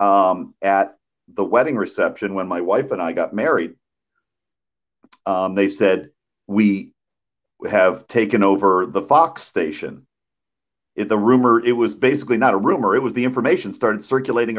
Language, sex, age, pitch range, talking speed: English, male, 50-69, 95-115 Hz, 150 wpm